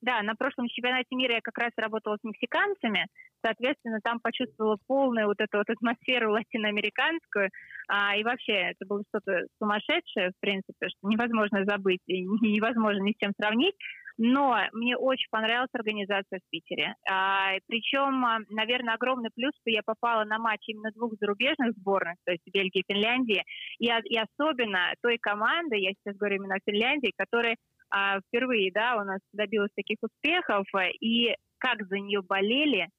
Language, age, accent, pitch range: Russian, 20-39, native, 200-240 Hz